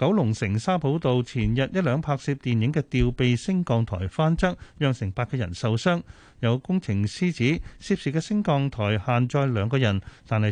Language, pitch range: Chinese, 105-145 Hz